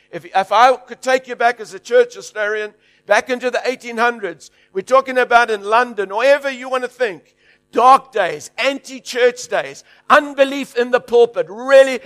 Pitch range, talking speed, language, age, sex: 205-275 Hz, 175 wpm, English, 60-79, male